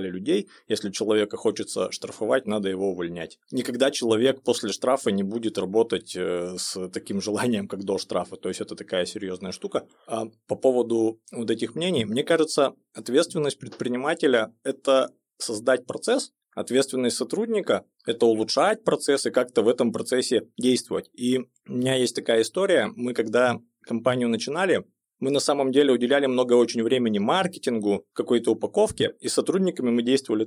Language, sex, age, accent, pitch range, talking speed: Russian, male, 20-39, native, 105-135 Hz, 150 wpm